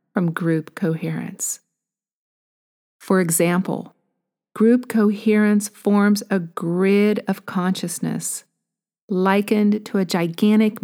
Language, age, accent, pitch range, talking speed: English, 50-69, American, 185-225 Hz, 90 wpm